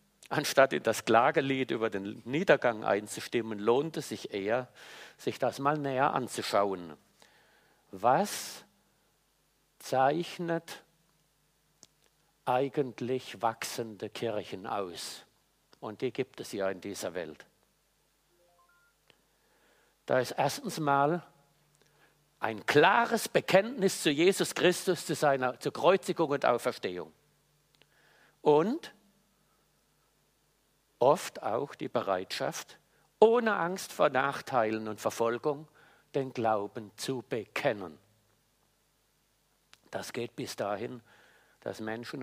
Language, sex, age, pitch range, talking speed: German, male, 50-69, 110-165 Hz, 95 wpm